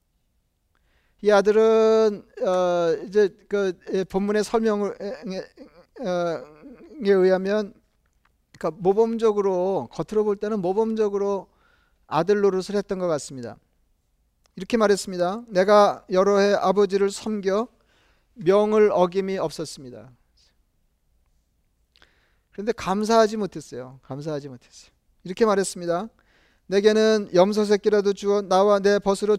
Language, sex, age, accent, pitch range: Korean, male, 40-59, native, 165-210 Hz